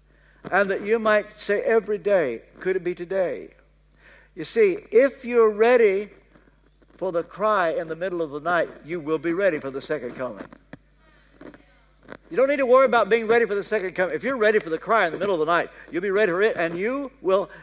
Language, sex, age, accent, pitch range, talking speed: English, male, 60-79, American, 175-240 Hz, 220 wpm